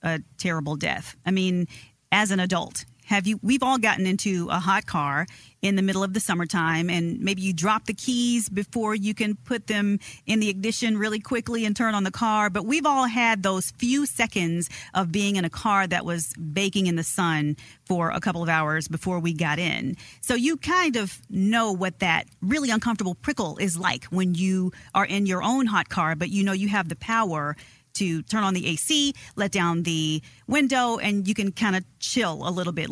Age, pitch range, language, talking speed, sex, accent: 40-59, 175-220 Hz, English, 210 wpm, female, American